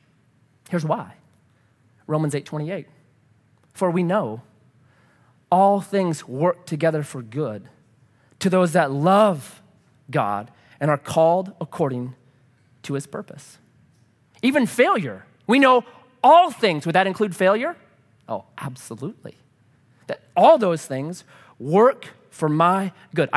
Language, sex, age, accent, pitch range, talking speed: English, male, 30-49, American, 145-205 Hz, 120 wpm